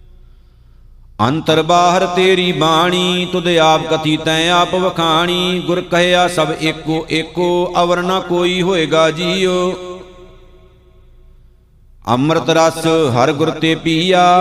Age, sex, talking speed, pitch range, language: 50-69, male, 95 wpm, 155-180 Hz, Punjabi